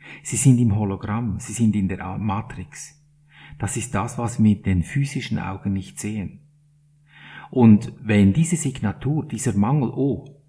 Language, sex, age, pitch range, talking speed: German, male, 50-69, 105-150 Hz, 155 wpm